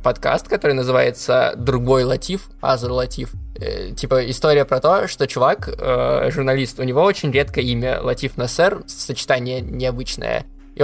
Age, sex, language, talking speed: 20-39, male, Russian, 145 wpm